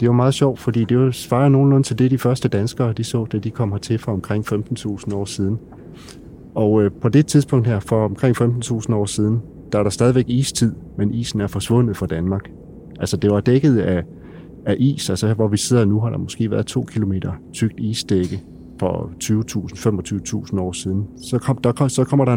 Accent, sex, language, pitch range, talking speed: native, male, Danish, 100-120 Hz, 205 wpm